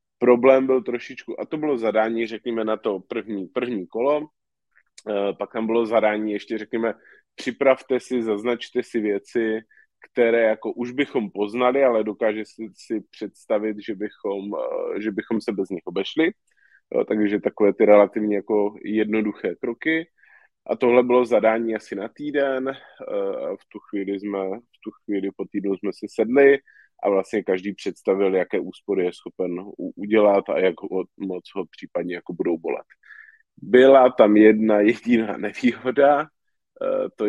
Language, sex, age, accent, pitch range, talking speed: Czech, male, 20-39, native, 105-125 Hz, 145 wpm